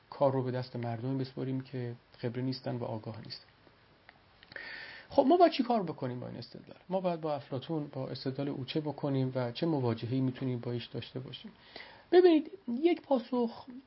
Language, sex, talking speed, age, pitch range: Persian, male, 175 wpm, 40-59, 125-160 Hz